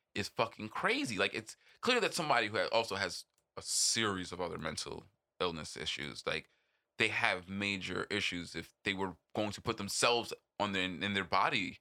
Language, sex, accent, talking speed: English, male, American, 180 wpm